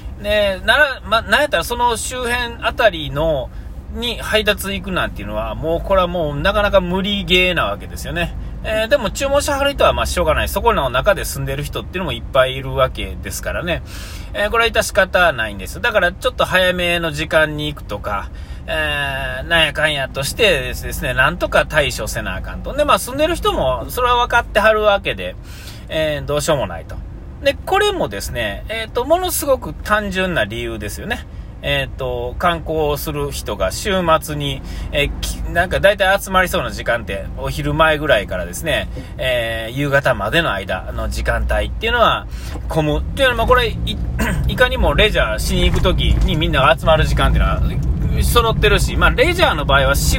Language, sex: Japanese, male